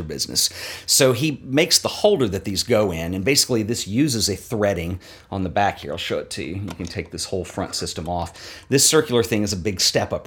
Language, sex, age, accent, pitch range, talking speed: English, male, 40-59, American, 90-115 Hz, 235 wpm